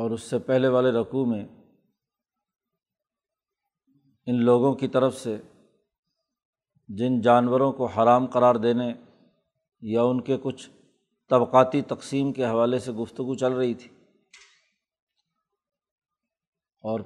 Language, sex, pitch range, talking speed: Urdu, male, 120-135 Hz, 115 wpm